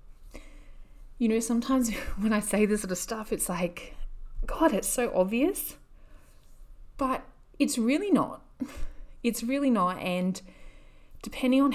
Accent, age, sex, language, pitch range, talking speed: Australian, 30-49, female, English, 175-245 Hz, 135 wpm